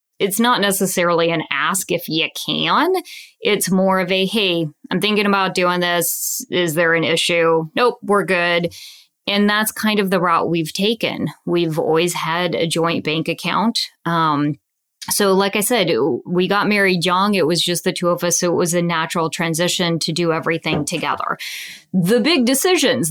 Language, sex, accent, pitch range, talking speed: English, female, American, 170-210 Hz, 180 wpm